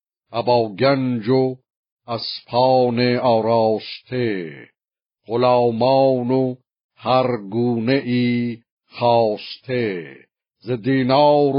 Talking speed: 50 wpm